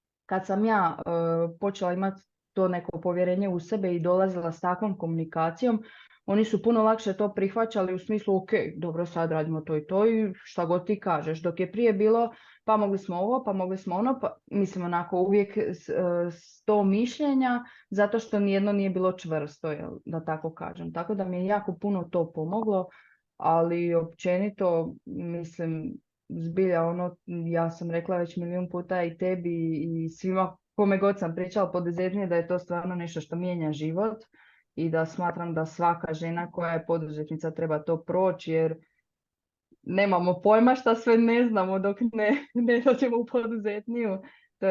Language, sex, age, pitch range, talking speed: Croatian, female, 20-39, 165-205 Hz, 170 wpm